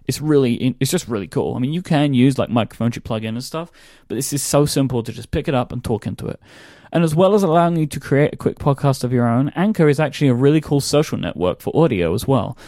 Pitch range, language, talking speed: 120-155 Hz, English, 275 wpm